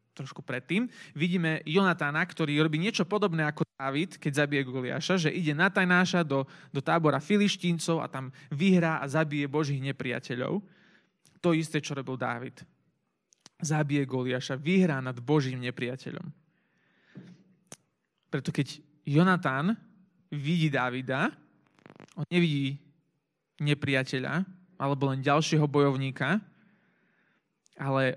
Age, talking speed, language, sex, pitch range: 20-39, 110 wpm, Slovak, male, 140-180 Hz